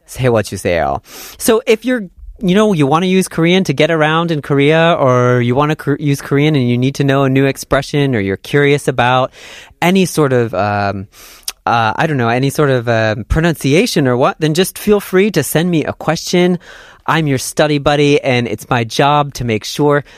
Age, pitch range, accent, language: 30-49, 125-175 Hz, American, Korean